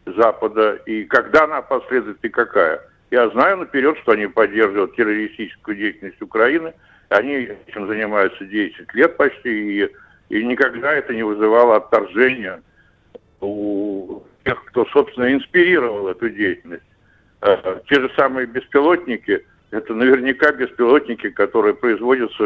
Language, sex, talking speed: Russian, male, 120 wpm